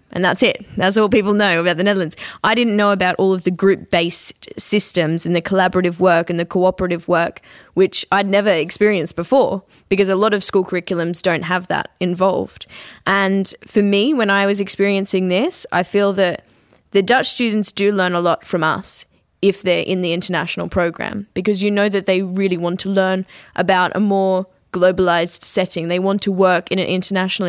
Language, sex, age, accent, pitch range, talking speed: English, female, 10-29, Australian, 180-205 Hz, 195 wpm